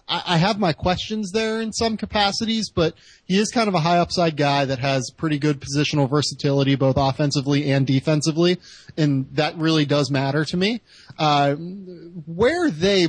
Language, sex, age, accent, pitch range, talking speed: English, male, 30-49, American, 140-175 Hz, 170 wpm